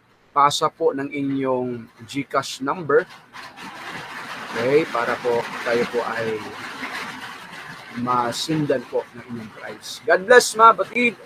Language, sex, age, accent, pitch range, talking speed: Filipino, male, 20-39, native, 125-195 Hz, 110 wpm